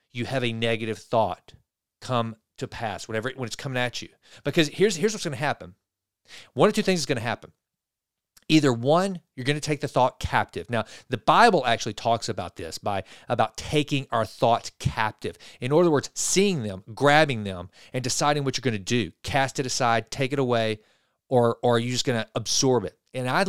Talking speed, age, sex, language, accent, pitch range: 210 wpm, 40-59, male, English, American, 115-140 Hz